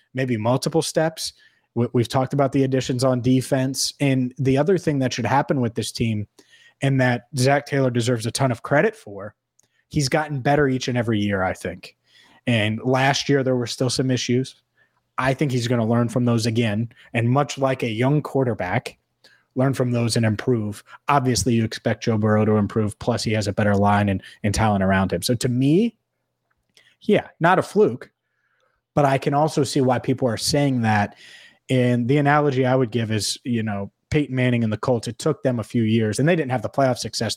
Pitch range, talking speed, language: 115-140 Hz, 205 wpm, English